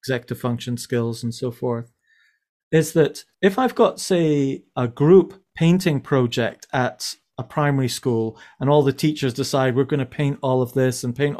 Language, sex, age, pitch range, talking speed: English, male, 30-49, 130-155 Hz, 180 wpm